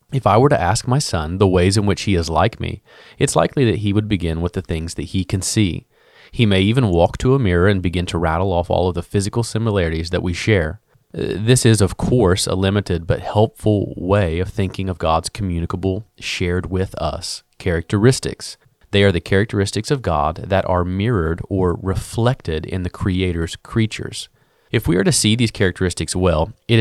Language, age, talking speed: English, 30-49, 200 wpm